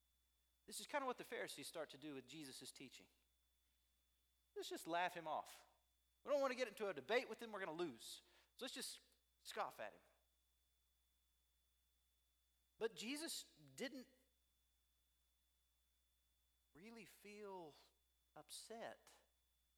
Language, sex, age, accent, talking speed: English, male, 40-59, American, 135 wpm